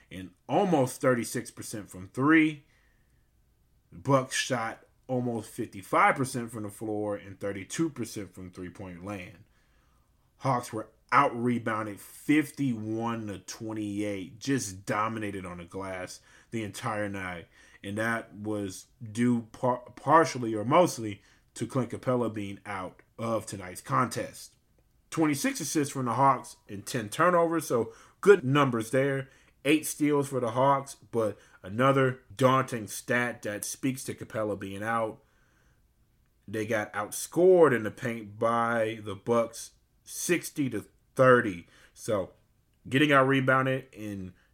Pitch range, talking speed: 105-130 Hz, 125 wpm